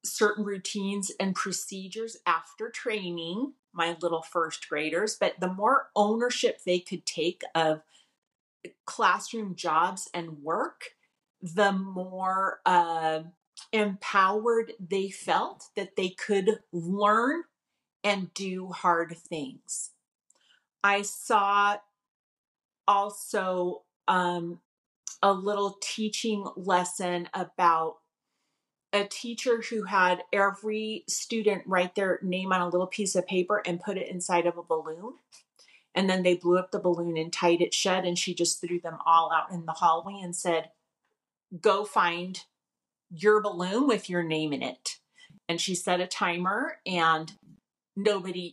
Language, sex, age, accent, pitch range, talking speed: English, female, 30-49, American, 170-205 Hz, 130 wpm